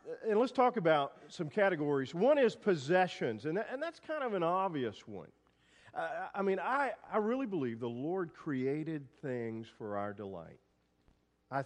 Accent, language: American, English